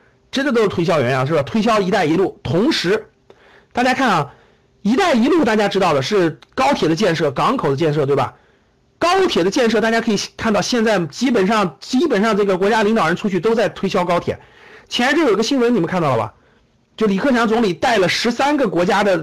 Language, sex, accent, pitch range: Chinese, male, native, 195-280 Hz